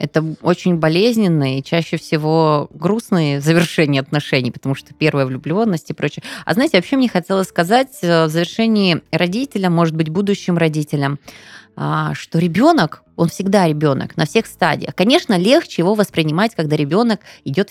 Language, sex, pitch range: Russian, female, 155-200 Hz